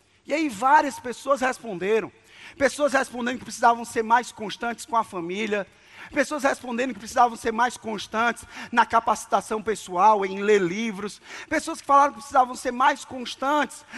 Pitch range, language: 235-290 Hz, Portuguese